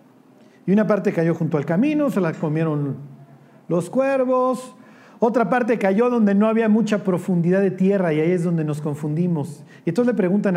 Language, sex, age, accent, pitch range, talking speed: Spanish, male, 40-59, Mexican, 180-240 Hz, 180 wpm